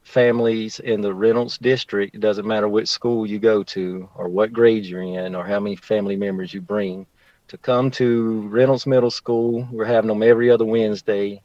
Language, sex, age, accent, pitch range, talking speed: English, male, 40-59, American, 100-125 Hz, 195 wpm